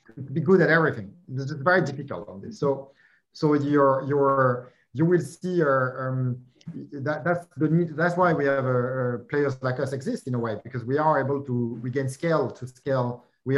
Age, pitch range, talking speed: 50-69, 125-150 Hz, 205 wpm